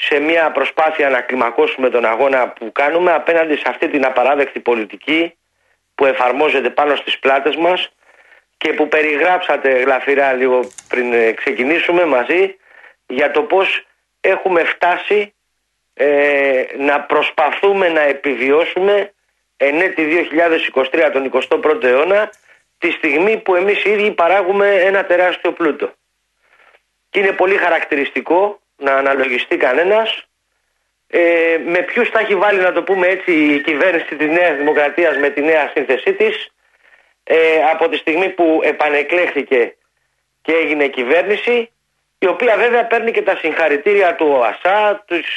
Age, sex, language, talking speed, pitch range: 40-59, male, Greek, 130 wpm, 145-195 Hz